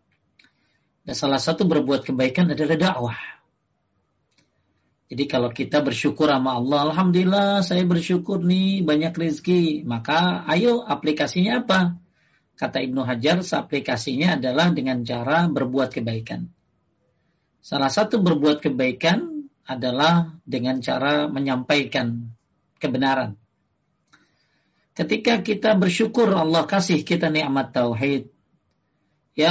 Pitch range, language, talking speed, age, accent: 130-170 Hz, Indonesian, 100 wpm, 40-59, native